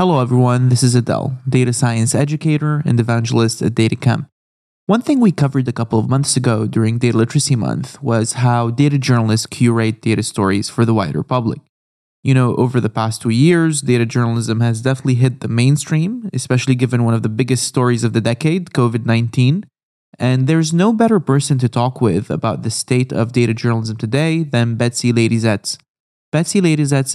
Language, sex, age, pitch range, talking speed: English, male, 20-39, 115-140 Hz, 180 wpm